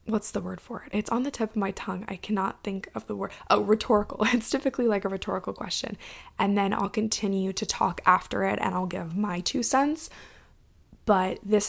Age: 20-39